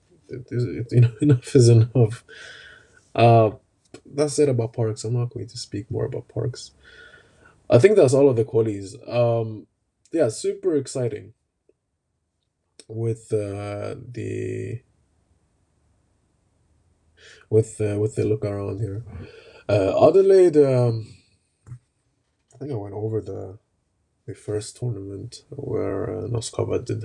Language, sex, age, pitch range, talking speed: English, male, 20-39, 105-130 Hz, 125 wpm